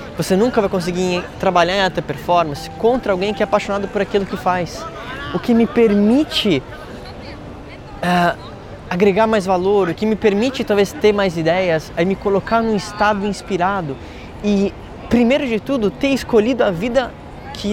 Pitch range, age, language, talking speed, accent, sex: 165-210 Hz, 20-39, Portuguese, 165 wpm, Brazilian, male